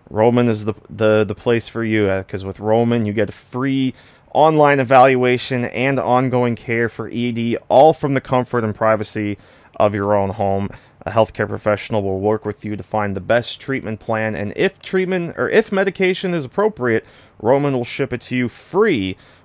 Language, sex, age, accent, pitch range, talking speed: English, male, 30-49, American, 105-130 Hz, 185 wpm